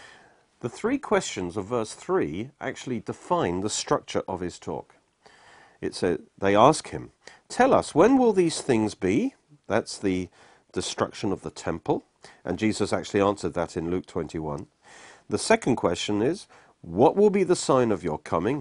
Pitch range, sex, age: 100-155 Hz, male, 40-59